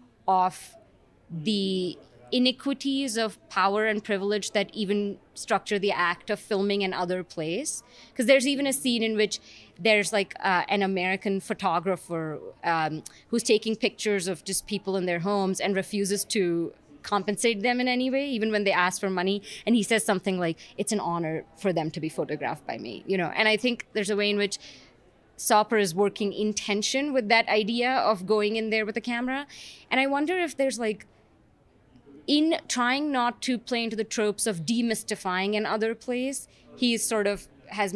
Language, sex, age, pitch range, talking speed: English, female, 20-39, 185-235 Hz, 185 wpm